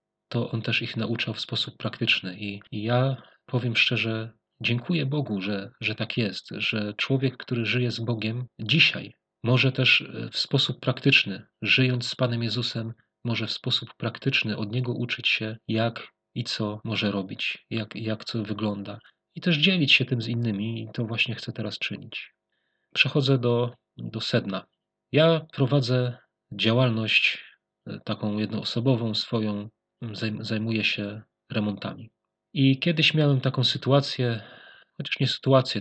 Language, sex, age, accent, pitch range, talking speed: Polish, male, 40-59, native, 105-125 Hz, 140 wpm